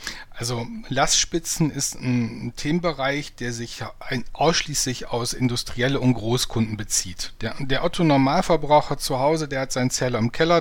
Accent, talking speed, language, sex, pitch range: German, 135 wpm, German, male, 120-155 Hz